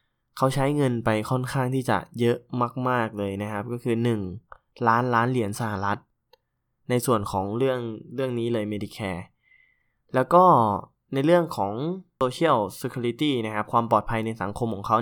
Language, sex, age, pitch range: Thai, male, 20-39, 110-130 Hz